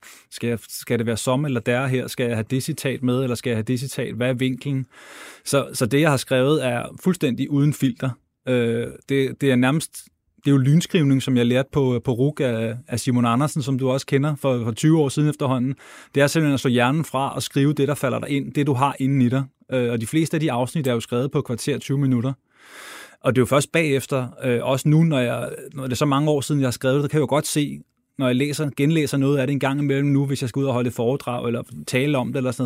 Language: Danish